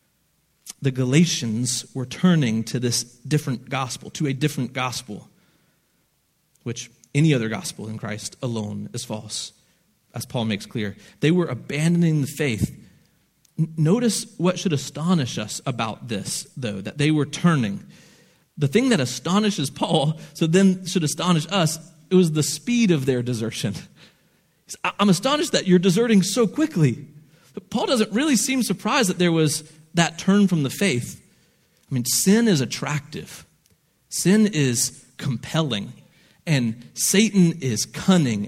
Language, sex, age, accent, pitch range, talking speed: English, male, 30-49, American, 125-170 Hz, 150 wpm